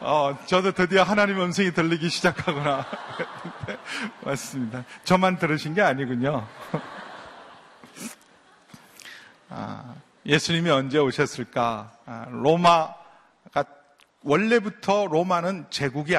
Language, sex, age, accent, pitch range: Korean, male, 40-59, native, 145-200 Hz